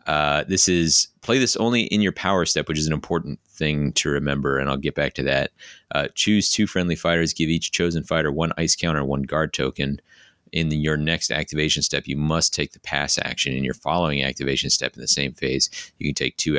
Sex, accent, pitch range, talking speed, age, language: male, American, 70-85 Hz, 225 wpm, 30-49, English